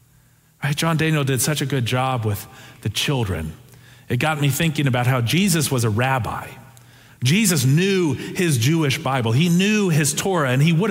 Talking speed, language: 175 wpm, English